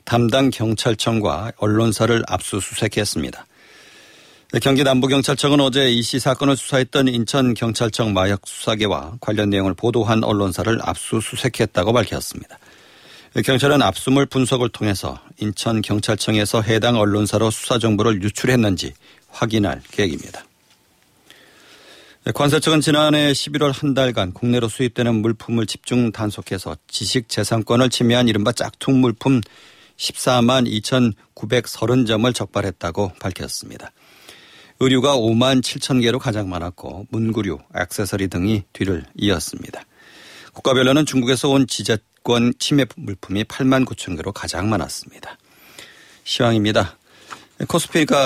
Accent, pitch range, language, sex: native, 105-130 Hz, Korean, male